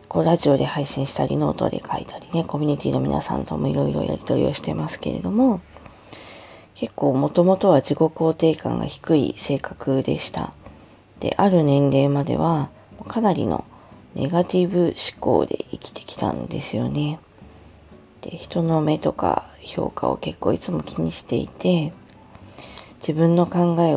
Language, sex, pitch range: Japanese, female, 135-175 Hz